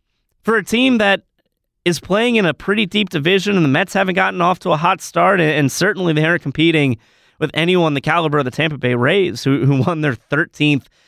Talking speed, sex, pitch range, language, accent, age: 210 wpm, male, 145-200 Hz, English, American, 30-49